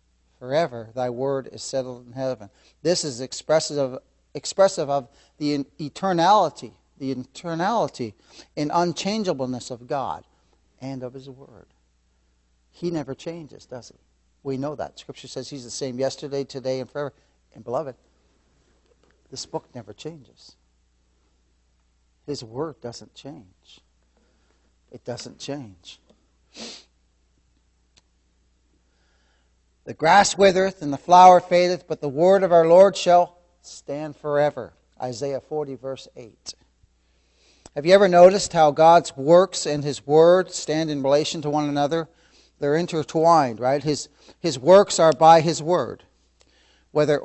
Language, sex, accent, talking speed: English, male, American, 130 wpm